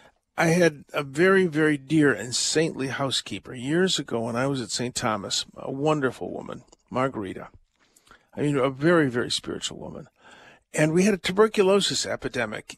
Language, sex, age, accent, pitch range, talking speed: English, male, 50-69, American, 135-185 Hz, 160 wpm